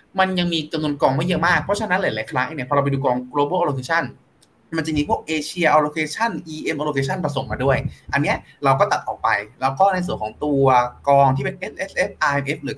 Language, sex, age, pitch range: Thai, male, 20-39, 135-175 Hz